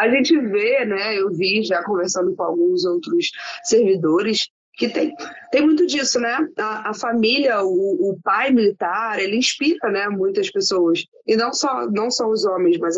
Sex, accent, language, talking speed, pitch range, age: female, Brazilian, Portuguese, 175 wpm, 180-275 Hz, 20-39